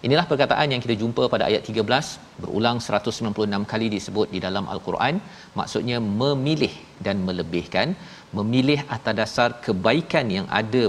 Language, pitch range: Malayalam, 105-135 Hz